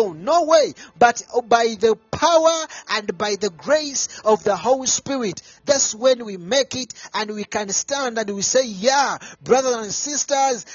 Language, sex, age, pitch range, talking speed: English, male, 40-59, 205-265 Hz, 165 wpm